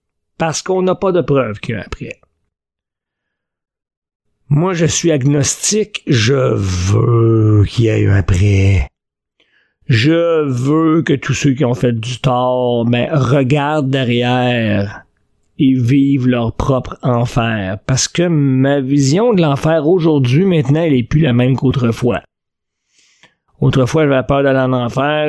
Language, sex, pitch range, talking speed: French, male, 120-160 Hz, 145 wpm